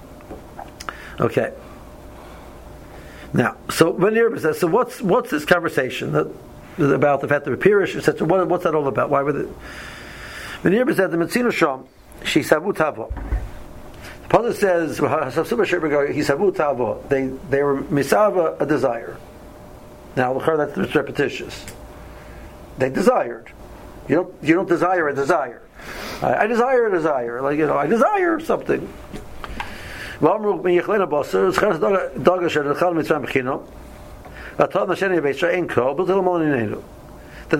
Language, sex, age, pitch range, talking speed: English, male, 60-79, 145-180 Hz, 115 wpm